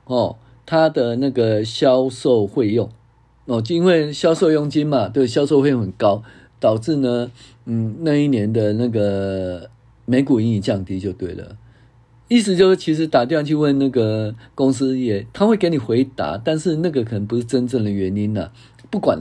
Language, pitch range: Chinese, 115-150 Hz